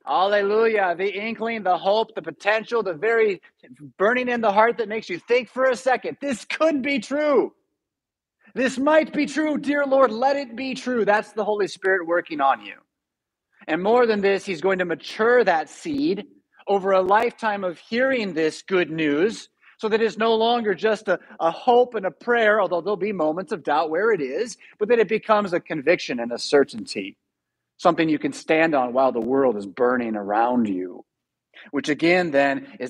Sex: male